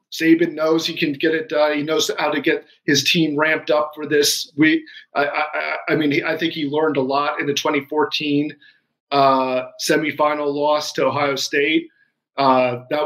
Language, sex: English, male